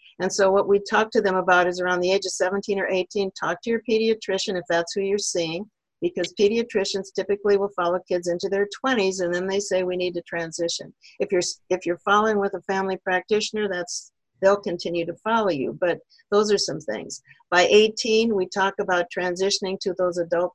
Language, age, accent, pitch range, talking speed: English, 50-69, American, 170-195 Hz, 205 wpm